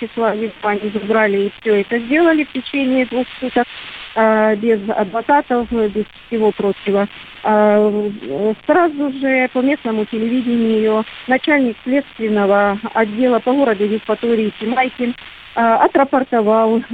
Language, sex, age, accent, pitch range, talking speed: Russian, female, 40-59, native, 210-245 Hz, 95 wpm